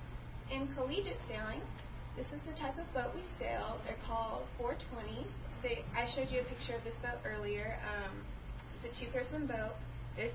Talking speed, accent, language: 175 wpm, American, English